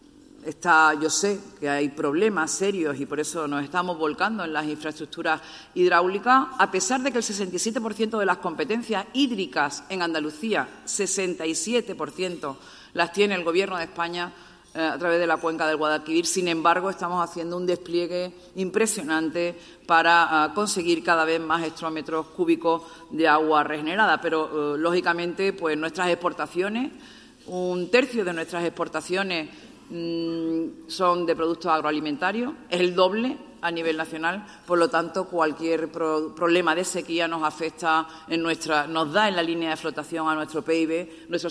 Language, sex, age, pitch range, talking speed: Spanish, female, 50-69, 160-185 Hz, 150 wpm